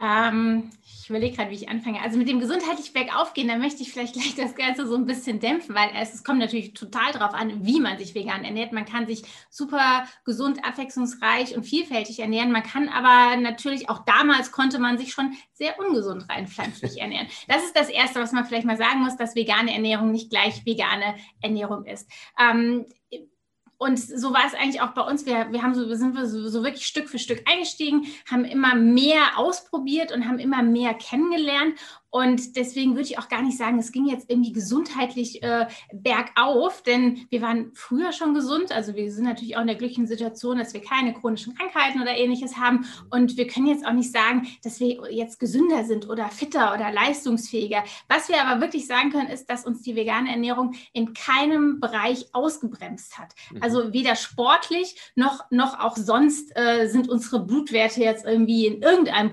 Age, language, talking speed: 30-49, German, 200 wpm